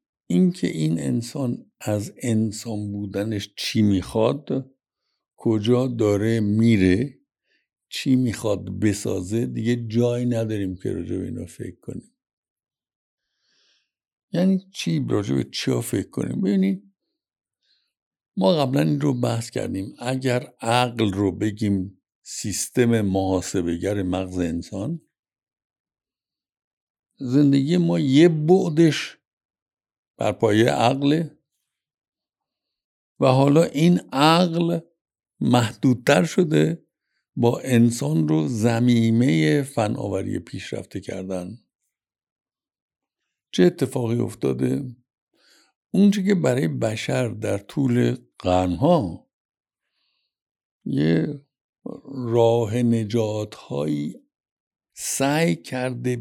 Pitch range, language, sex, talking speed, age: 100-145 Hz, Persian, male, 80 wpm, 60-79